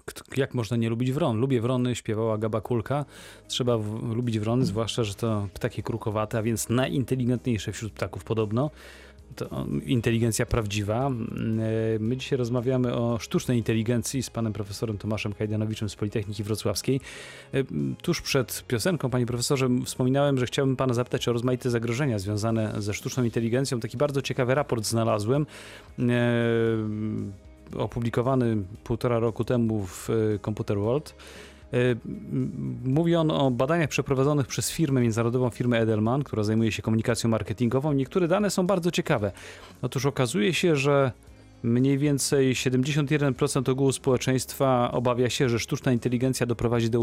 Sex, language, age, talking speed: male, Polish, 30-49, 135 wpm